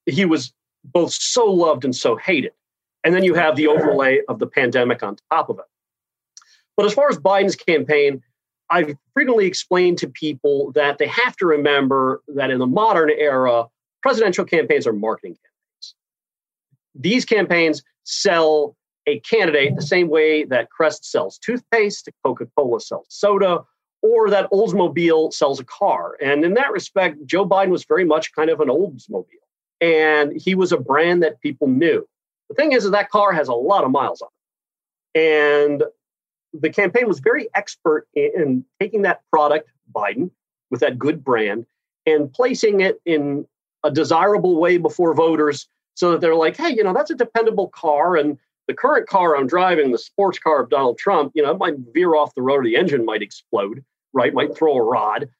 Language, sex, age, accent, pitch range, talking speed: English, male, 40-59, American, 150-225 Hz, 180 wpm